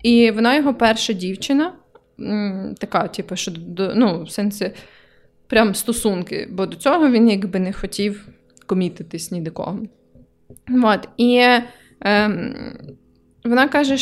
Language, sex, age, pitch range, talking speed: Ukrainian, female, 20-39, 195-245 Hz, 130 wpm